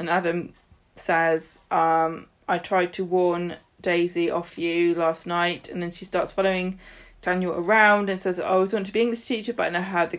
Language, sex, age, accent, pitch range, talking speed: English, female, 20-39, British, 170-230 Hz, 205 wpm